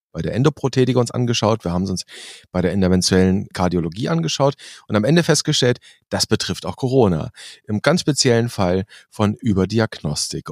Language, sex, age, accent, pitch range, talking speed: German, male, 40-59, German, 100-140 Hz, 160 wpm